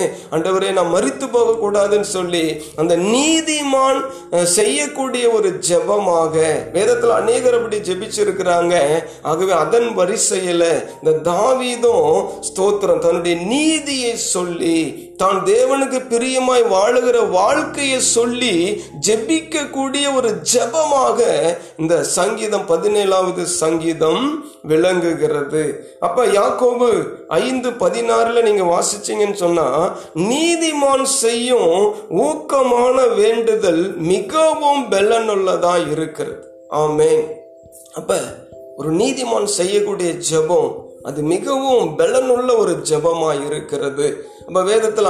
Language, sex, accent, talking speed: Tamil, male, native, 65 wpm